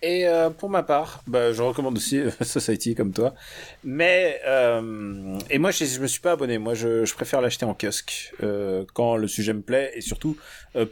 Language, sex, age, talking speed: French, male, 30-49, 215 wpm